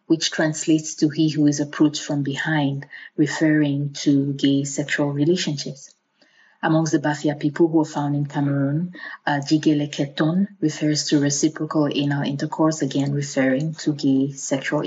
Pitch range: 145-160 Hz